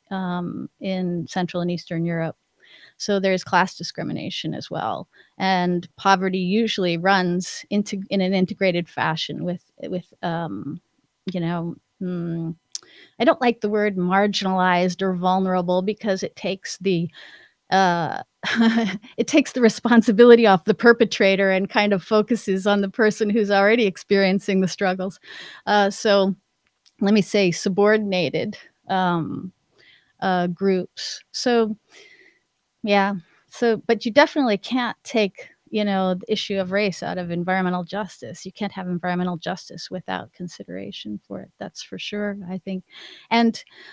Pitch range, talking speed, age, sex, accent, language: 180-215 Hz, 140 wpm, 30-49, female, American, English